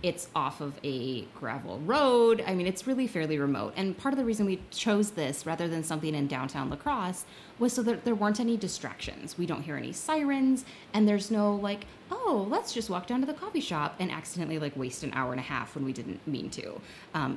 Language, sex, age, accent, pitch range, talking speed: English, female, 20-39, American, 145-205 Hz, 230 wpm